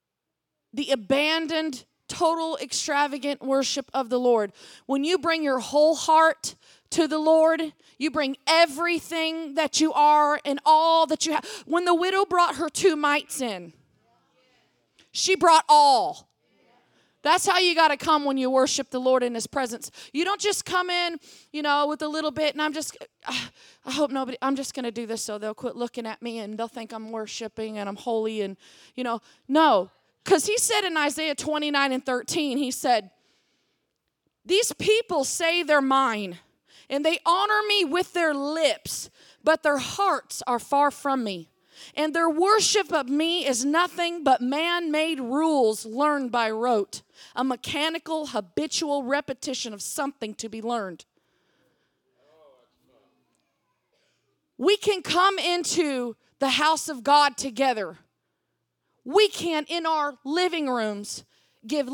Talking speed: 155 wpm